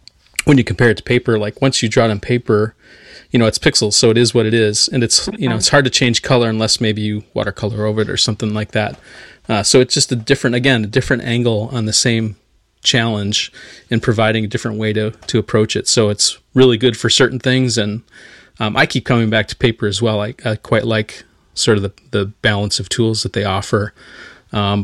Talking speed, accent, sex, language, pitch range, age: 235 wpm, American, male, English, 110-125 Hz, 30-49